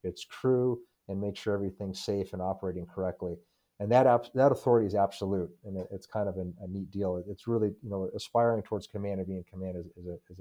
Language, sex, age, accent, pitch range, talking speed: English, male, 30-49, American, 100-115 Hz, 240 wpm